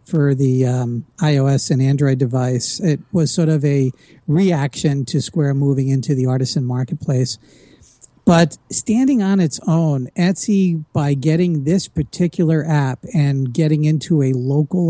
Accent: American